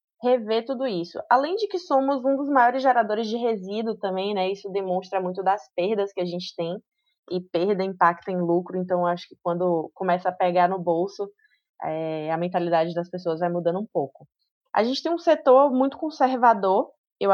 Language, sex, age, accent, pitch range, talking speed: Portuguese, female, 20-39, Brazilian, 185-245 Hz, 190 wpm